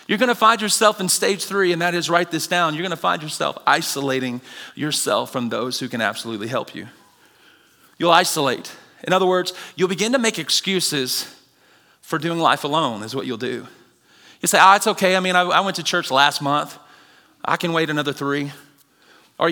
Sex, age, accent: male, 30-49, American